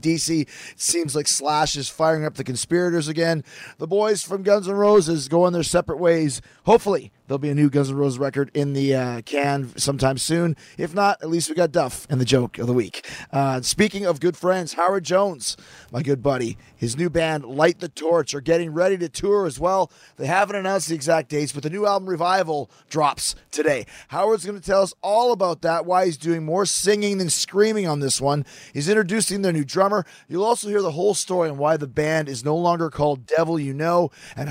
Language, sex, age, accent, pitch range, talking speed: English, male, 30-49, American, 145-190 Hz, 220 wpm